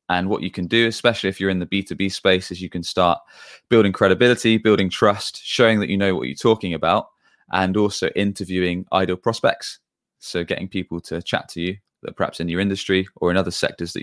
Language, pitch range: English, 85-105 Hz